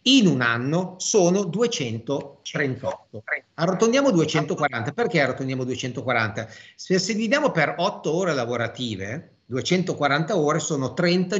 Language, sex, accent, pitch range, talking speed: Italian, male, native, 125-185 Hz, 110 wpm